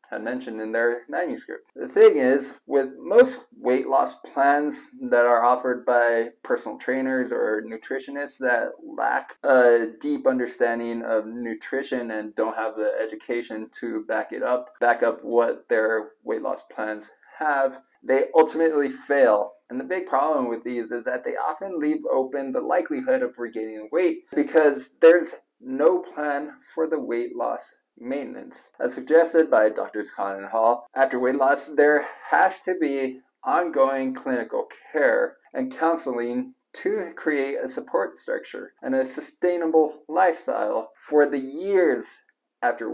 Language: English